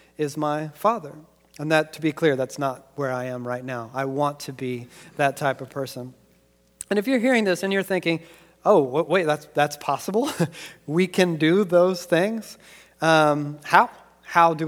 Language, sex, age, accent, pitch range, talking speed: English, male, 40-59, American, 145-170 Hz, 185 wpm